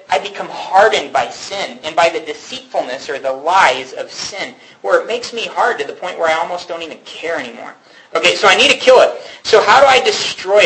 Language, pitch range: English, 160-215 Hz